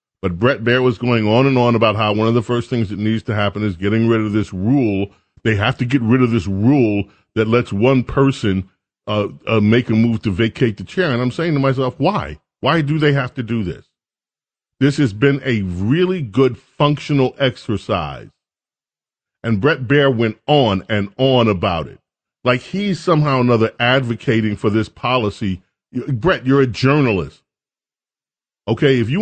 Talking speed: 190 wpm